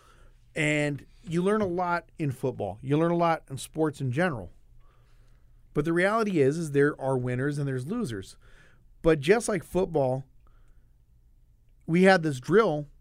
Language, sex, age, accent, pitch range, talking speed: English, male, 40-59, American, 125-170 Hz, 155 wpm